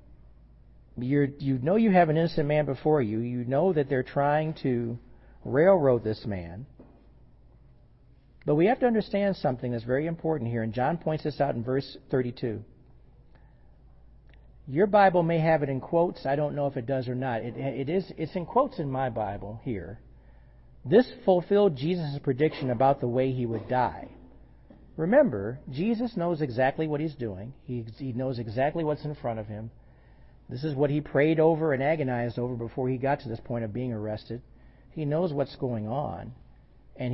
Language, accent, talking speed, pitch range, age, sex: English, American, 175 wpm, 120-150 Hz, 50-69, male